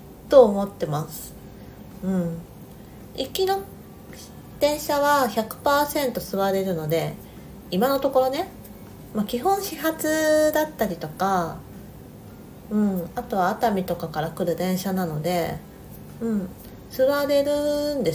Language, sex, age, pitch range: Japanese, female, 40-59, 175-260 Hz